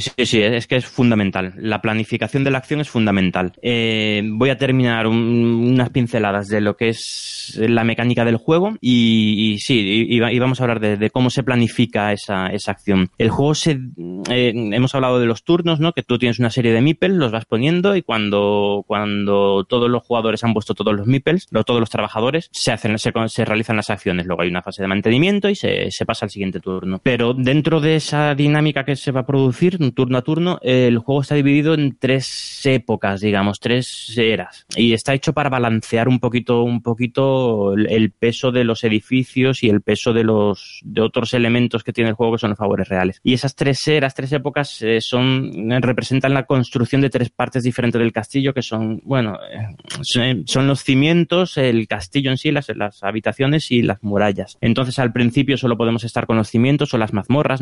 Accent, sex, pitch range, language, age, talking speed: Spanish, male, 110-135 Hz, Spanish, 20-39, 205 wpm